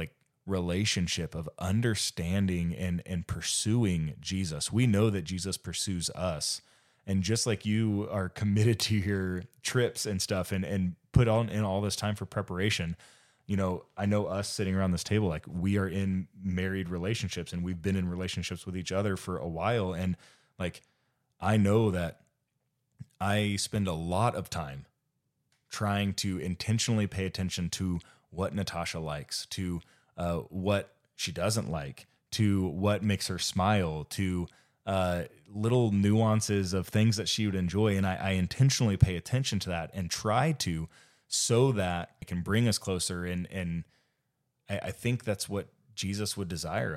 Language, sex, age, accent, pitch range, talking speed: English, male, 20-39, American, 90-110 Hz, 165 wpm